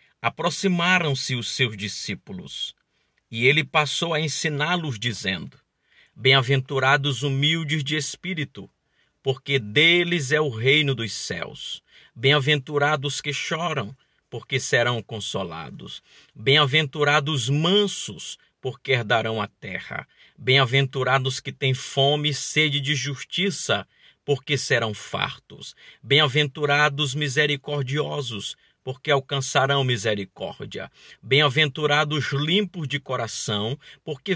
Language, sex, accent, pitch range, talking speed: Portuguese, male, Brazilian, 130-155 Hz, 95 wpm